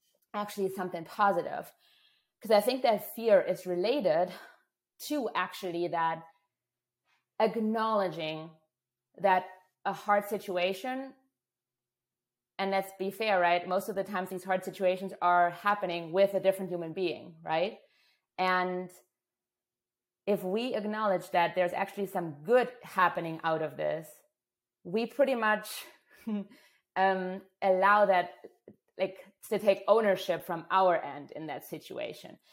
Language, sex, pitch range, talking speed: English, female, 175-205 Hz, 125 wpm